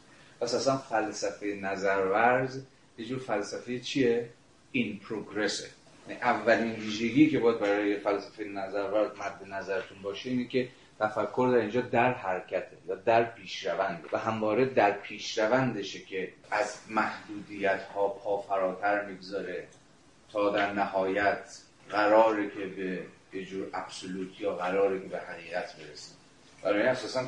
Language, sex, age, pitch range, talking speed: Persian, male, 30-49, 100-125 Hz, 130 wpm